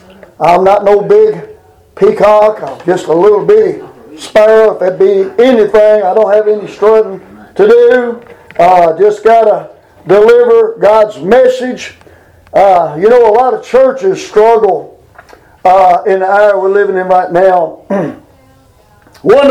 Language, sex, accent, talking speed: English, male, American, 150 wpm